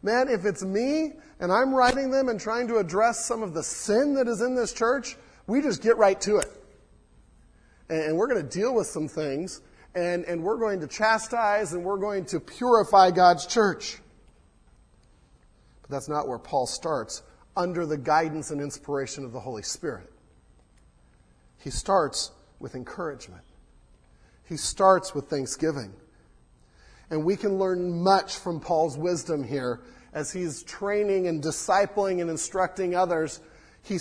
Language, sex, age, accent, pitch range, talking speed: English, male, 40-59, American, 155-205 Hz, 155 wpm